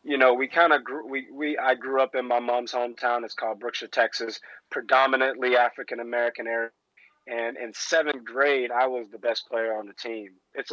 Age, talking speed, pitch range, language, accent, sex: 20-39, 195 wpm, 115-130 Hz, English, American, male